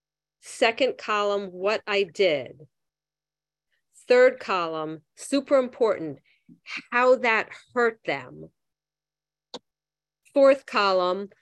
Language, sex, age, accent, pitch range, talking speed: English, female, 40-59, American, 175-225 Hz, 80 wpm